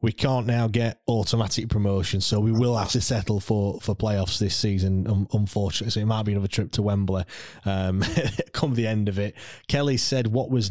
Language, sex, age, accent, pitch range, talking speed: English, male, 20-39, British, 100-120 Hz, 205 wpm